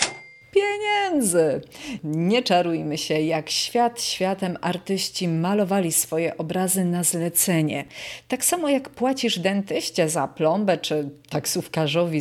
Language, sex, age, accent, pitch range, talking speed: Polish, female, 40-59, native, 165-225 Hz, 110 wpm